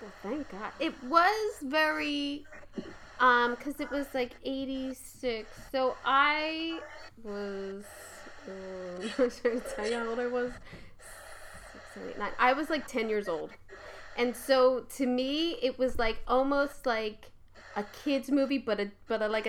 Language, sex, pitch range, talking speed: English, female, 205-270 Hz, 155 wpm